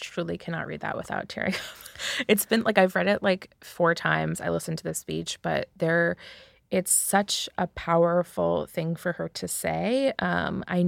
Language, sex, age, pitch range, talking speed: English, female, 20-39, 155-180 Hz, 190 wpm